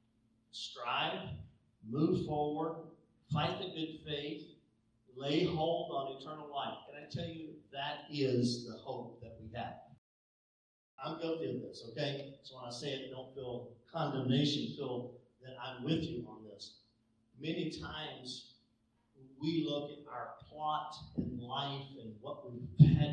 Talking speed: 145 wpm